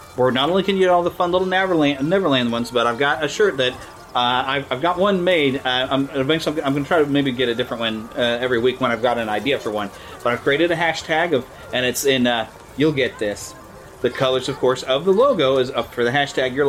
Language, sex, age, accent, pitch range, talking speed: English, male, 30-49, American, 125-210 Hz, 265 wpm